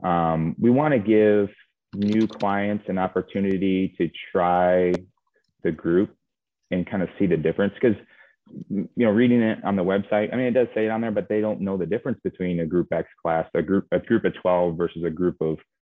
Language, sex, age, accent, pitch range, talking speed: English, male, 30-49, American, 85-100 Hz, 215 wpm